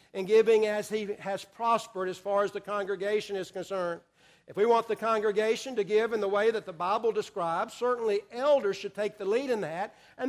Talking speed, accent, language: 210 wpm, American, English